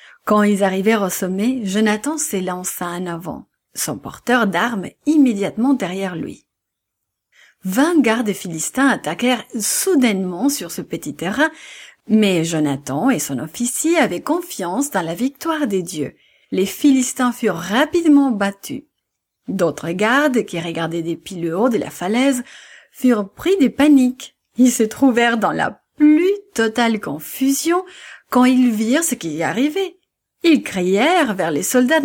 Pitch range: 190-275 Hz